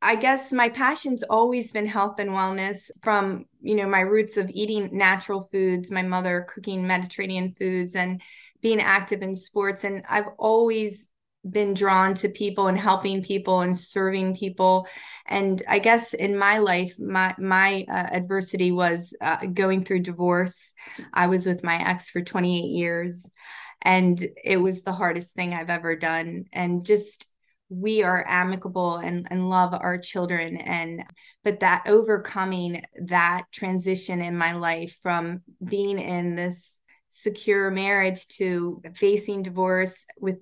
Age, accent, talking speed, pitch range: 20-39, American, 150 wpm, 180-200 Hz